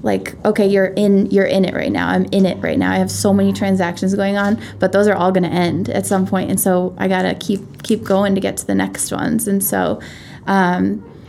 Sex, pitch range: female, 185-215 Hz